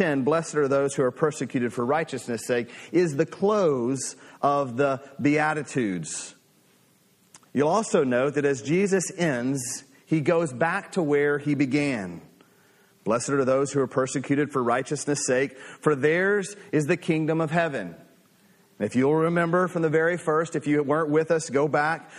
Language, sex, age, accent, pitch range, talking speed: English, male, 40-59, American, 135-170 Hz, 160 wpm